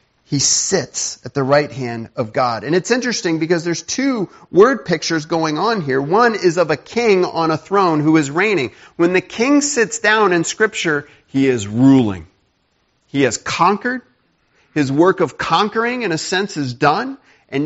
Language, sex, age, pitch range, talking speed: English, male, 40-59, 145-205 Hz, 180 wpm